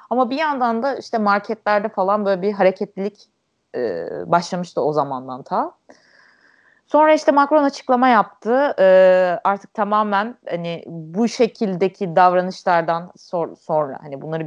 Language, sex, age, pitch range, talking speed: Turkish, female, 30-49, 170-230 Hz, 130 wpm